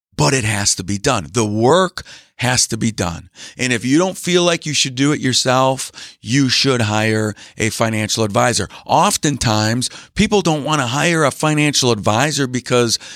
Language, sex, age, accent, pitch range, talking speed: English, male, 50-69, American, 110-150 Hz, 175 wpm